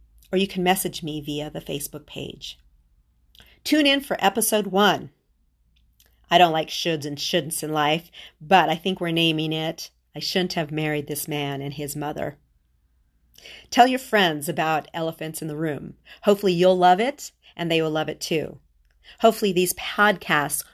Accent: American